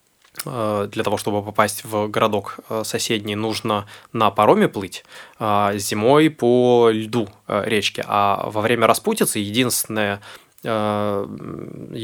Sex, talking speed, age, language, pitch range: male, 95 wpm, 20-39, Russian, 105-120 Hz